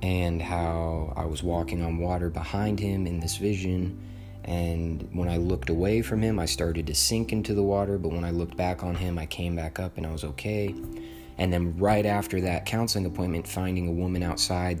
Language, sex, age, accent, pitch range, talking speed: English, male, 20-39, American, 85-100 Hz, 210 wpm